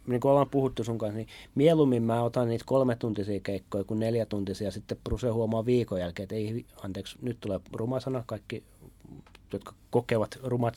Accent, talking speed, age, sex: native, 175 wpm, 30-49, male